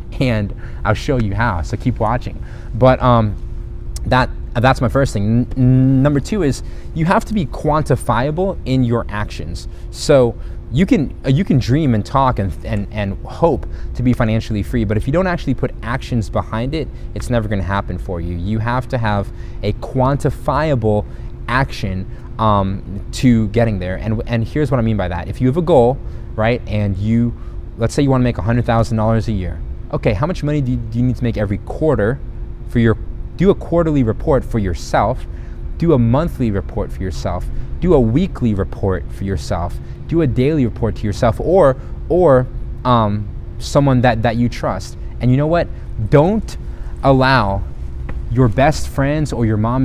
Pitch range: 105-130 Hz